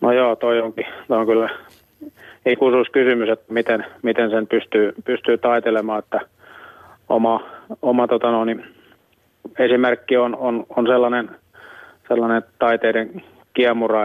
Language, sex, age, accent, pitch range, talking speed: Finnish, male, 30-49, native, 110-120 Hz, 125 wpm